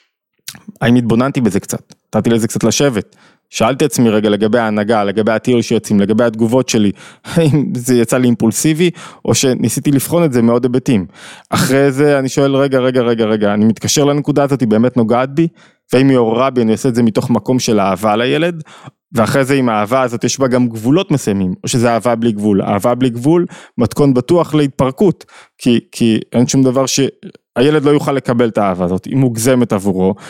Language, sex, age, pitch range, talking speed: Hebrew, male, 20-39, 115-145 Hz, 175 wpm